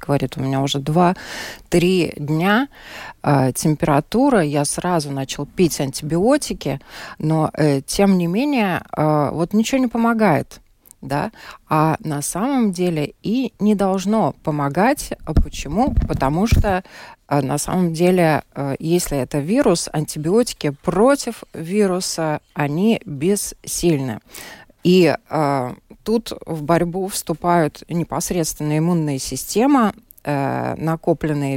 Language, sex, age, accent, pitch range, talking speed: Russian, female, 20-39, native, 145-190 Hz, 110 wpm